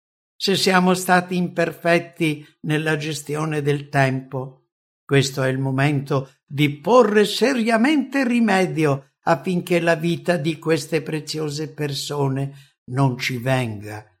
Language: English